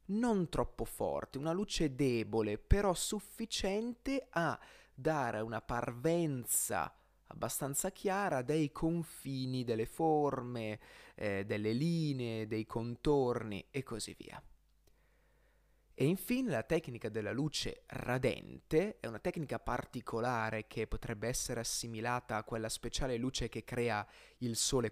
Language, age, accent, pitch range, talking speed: Italian, 20-39, native, 115-160 Hz, 120 wpm